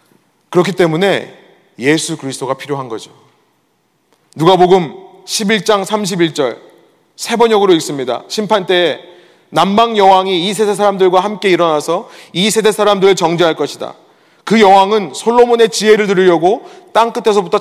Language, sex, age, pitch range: Korean, male, 30-49, 170-235 Hz